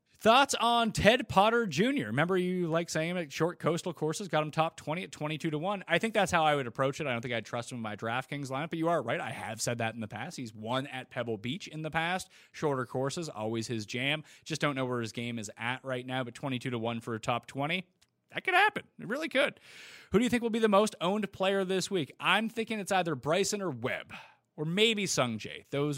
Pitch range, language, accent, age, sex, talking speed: 120-175 Hz, English, American, 30-49, male, 255 wpm